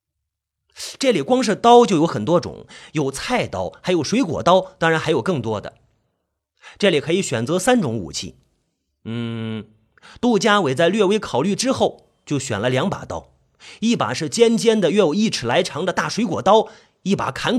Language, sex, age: Chinese, male, 30-49